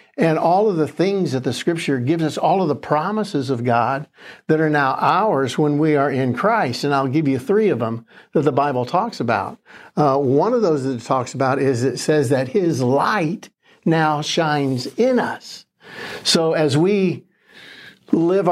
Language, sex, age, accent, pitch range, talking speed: English, male, 60-79, American, 135-165 Hz, 190 wpm